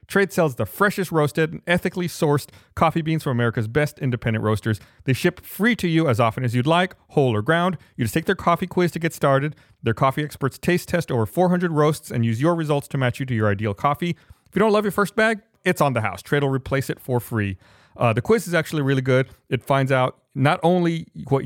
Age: 30-49